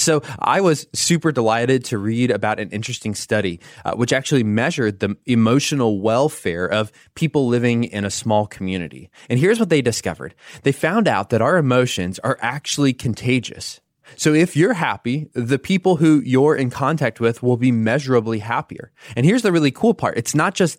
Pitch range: 115-155 Hz